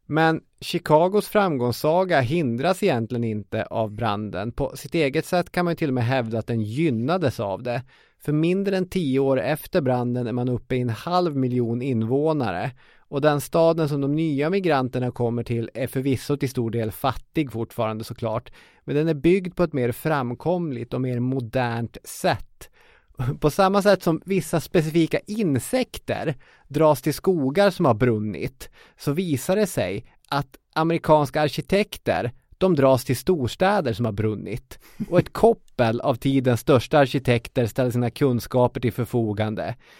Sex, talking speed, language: male, 160 wpm, English